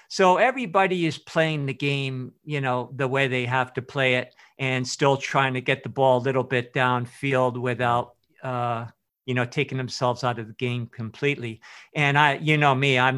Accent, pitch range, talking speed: American, 125-135 Hz, 195 wpm